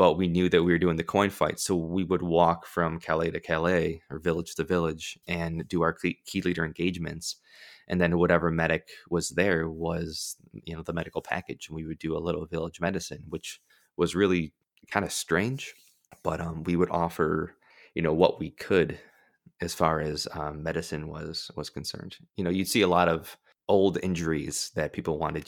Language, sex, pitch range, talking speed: English, male, 80-90 Hz, 200 wpm